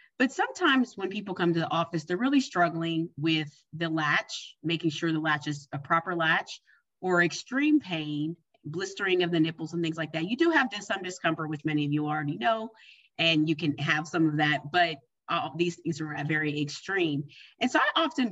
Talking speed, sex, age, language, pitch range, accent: 200 wpm, female, 30-49, English, 155-180 Hz, American